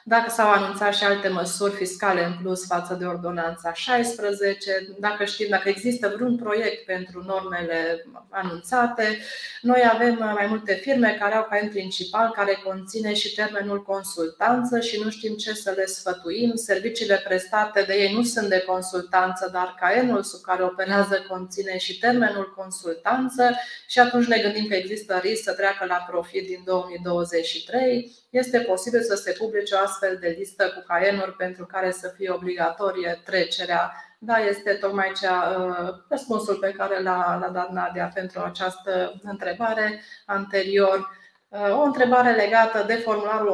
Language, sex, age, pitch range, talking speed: Romanian, female, 30-49, 185-225 Hz, 155 wpm